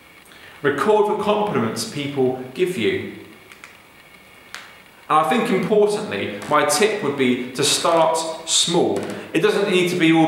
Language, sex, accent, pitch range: English, male, British, 125-185 Hz